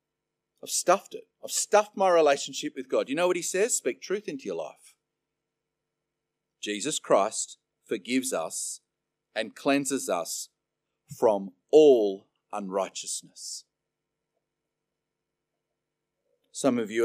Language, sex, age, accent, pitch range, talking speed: English, male, 40-59, Australian, 110-170 Hz, 115 wpm